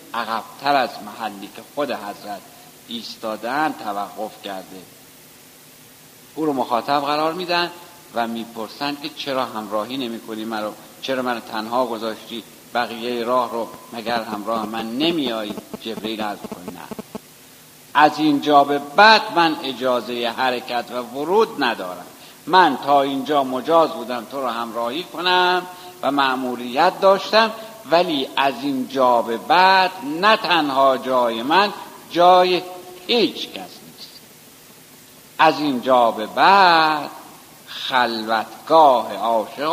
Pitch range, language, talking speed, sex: 120-170 Hz, Persian, 120 wpm, male